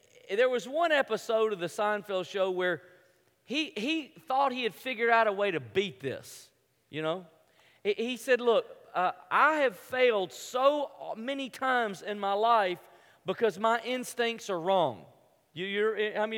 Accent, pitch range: American, 185-260 Hz